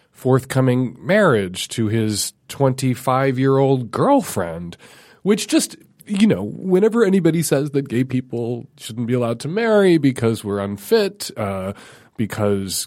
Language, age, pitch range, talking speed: English, 30-49, 105-150 Hz, 125 wpm